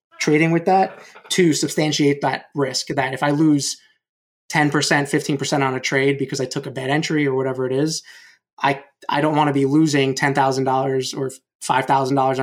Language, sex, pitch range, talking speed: English, male, 135-150 Hz, 175 wpm